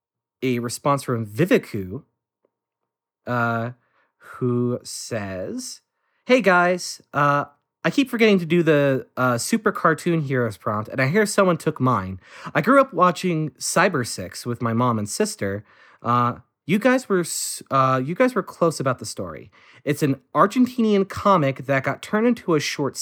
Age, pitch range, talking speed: 30-49, 125-175 Hz, 155 wpm